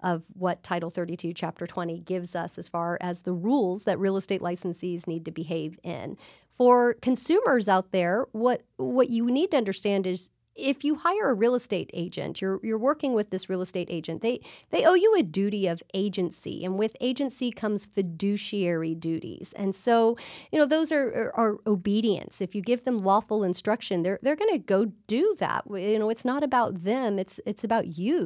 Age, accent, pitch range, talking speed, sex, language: 40-59, American, 190-250 Hz, 195 wpm, female, English